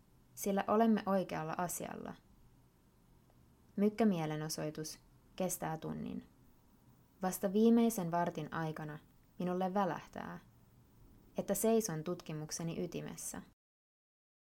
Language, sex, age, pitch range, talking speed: Finnish, female, 20-39, 155-205 Hz, 75 wpm